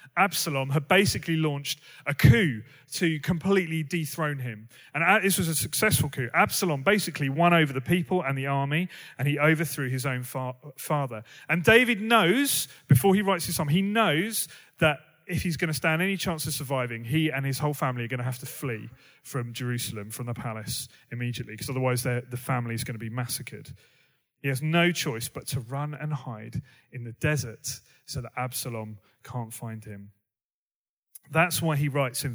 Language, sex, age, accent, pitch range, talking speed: English, male, 30-49, British, 125-170 Hz, 185 wpm